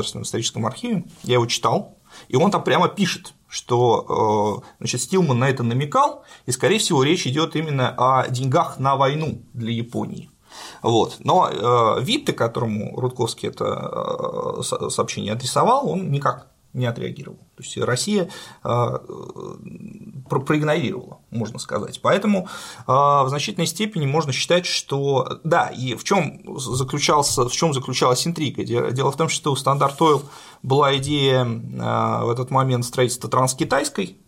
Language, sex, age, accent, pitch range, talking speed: Russian, male, 30-49, native, 120-155 Hz, 130 wpm